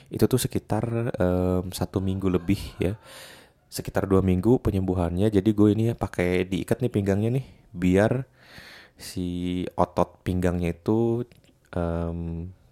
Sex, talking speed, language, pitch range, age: male, 125 wpm, Indonesian, 90-110 Hz, 20-39